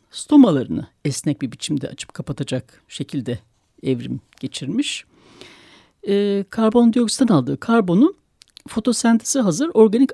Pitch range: 170-255 Hz